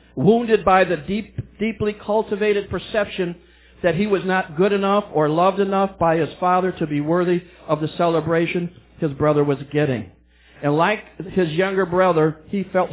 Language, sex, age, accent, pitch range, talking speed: English, male, 50-69, American, 135-205 Hz, 165 wpm